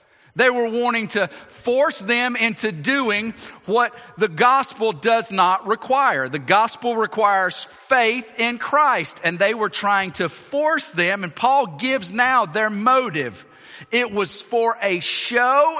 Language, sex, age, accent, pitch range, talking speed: English, male, 50-69, American, 155-240 Hz, 145 wpm